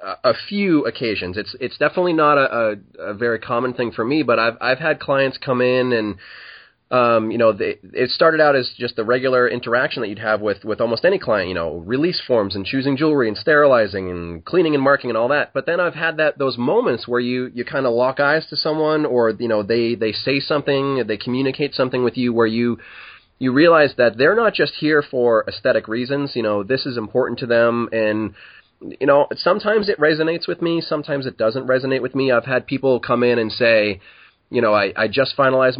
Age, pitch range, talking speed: 20-39, 115-140 Hz, 225 wpm